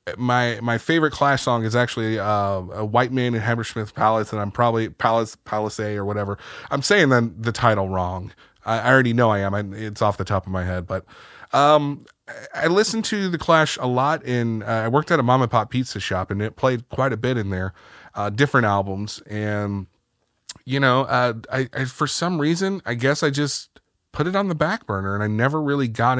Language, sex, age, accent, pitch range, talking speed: English, male, 30-49, American, 105-150 Hz, 220 wpm